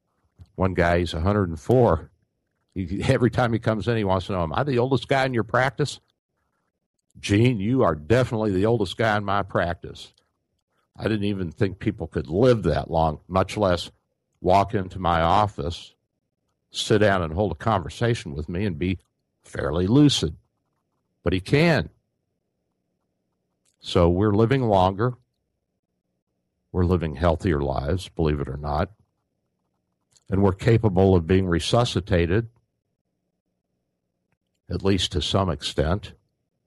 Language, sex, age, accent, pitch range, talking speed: English, male, 60-79, American, 80-105 Hz, 135 wpm